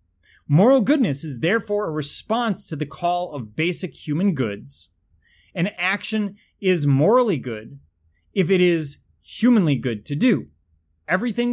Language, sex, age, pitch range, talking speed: English, male, 30-49, 115-180 Hz, 135 wpm